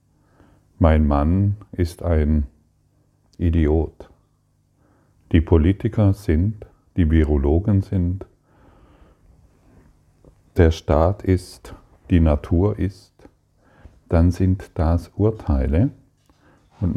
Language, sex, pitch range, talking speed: German, male, 80-100 Hz, 80 wpm